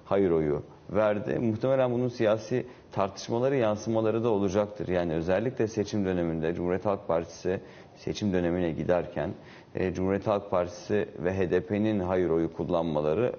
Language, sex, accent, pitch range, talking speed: Turkish, male, native, 90-115 Hz, 125 wpm